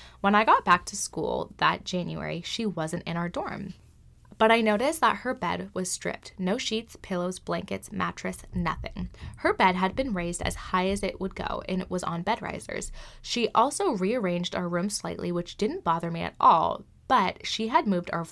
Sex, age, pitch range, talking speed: female, 10-29, 180-270 Hz, 200 wpm